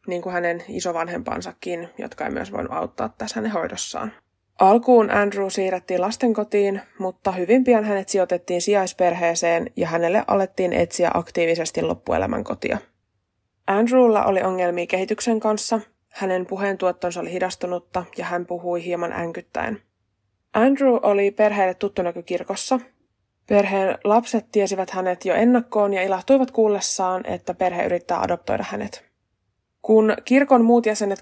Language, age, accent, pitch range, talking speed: Finnish, 20-39, native, 175-210 Hz, 125 wpm